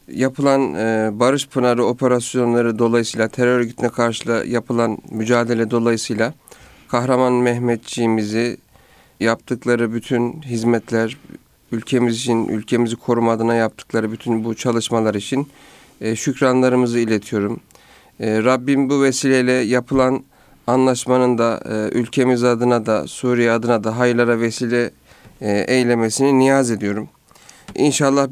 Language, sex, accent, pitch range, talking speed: Turkish, male, native, 115-135 Hz, 95 wpm